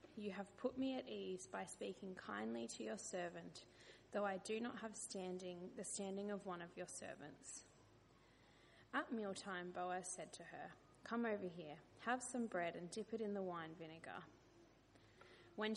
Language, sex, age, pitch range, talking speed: English, female, 20-39, 180-215 Hz, 170 wpm